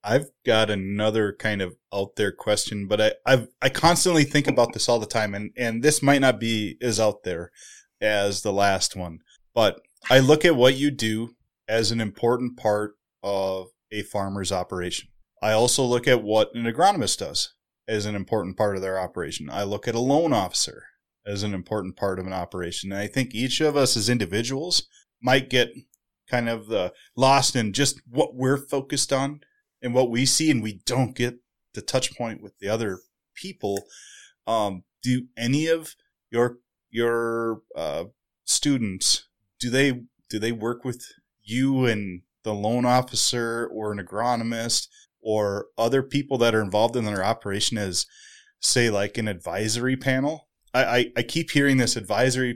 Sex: male